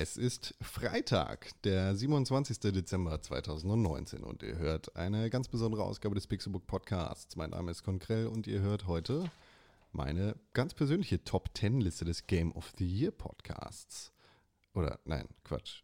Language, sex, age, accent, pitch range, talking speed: German, male, 30-49, German, 85-110 Hz, 150 wpm